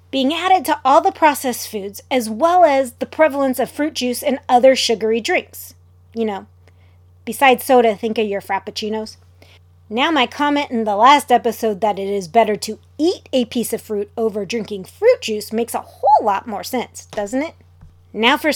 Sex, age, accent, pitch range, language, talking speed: female, 30-49, American, 185-265 Hz, English, 190 wpm